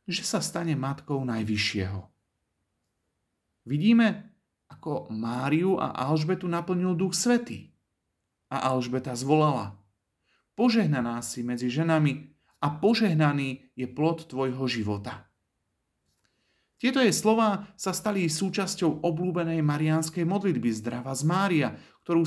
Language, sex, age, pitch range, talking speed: Slovak, male, 40-59, 115-175 Hz, 105 wpm